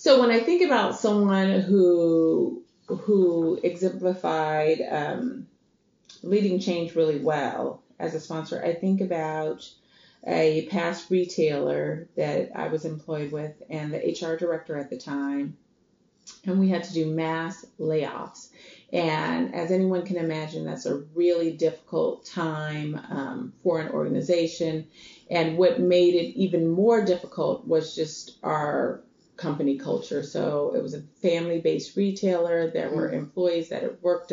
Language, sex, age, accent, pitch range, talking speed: English, female, 30-49, American, 160-185 Hz, 140 wpm